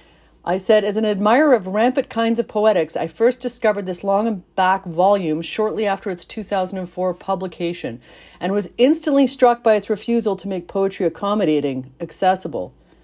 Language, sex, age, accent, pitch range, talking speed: English, female, 40-59, American, 150-220 Hz, 160 wpm